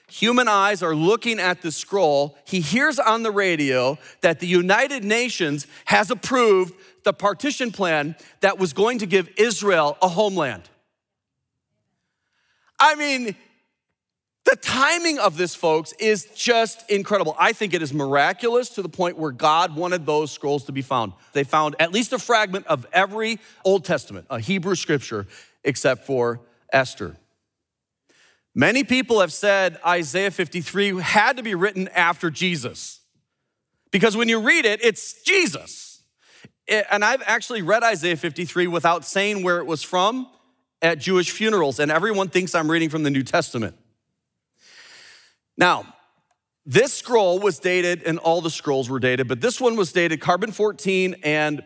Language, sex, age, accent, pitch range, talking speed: English, male, 40-59, American, 150-215 Hz, 155 wpm